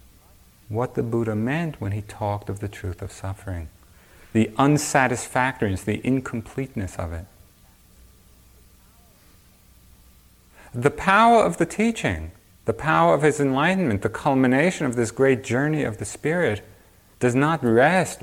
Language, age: English, 40-59